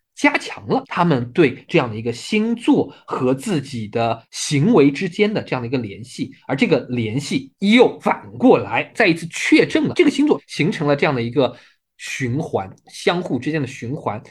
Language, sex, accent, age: Chinese, male, native, 20-39